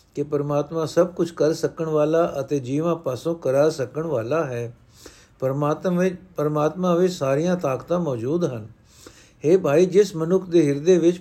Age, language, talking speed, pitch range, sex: 60-79, Punjabi, 155 wpm, 140-175 Hz, male